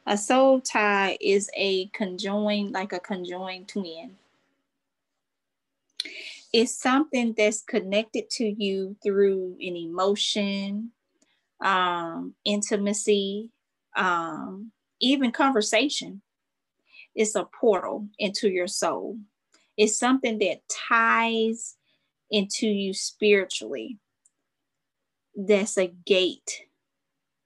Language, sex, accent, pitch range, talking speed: English, female, American, 195-225 Hz, 85 wpm